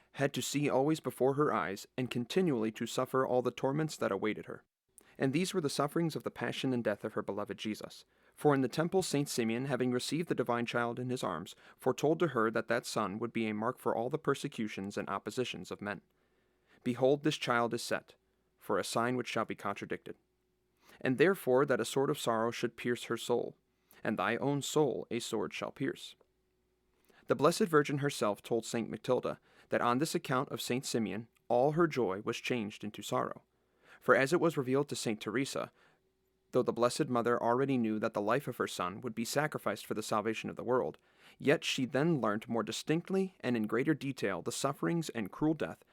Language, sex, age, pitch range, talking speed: English, male, 30-49, 115-140 Hz, 210 wpm